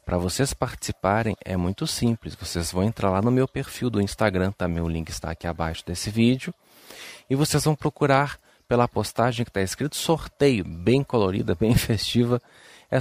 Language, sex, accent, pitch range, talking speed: Portuguese, male, Brazilian, 95-125 Hz, 175 wpm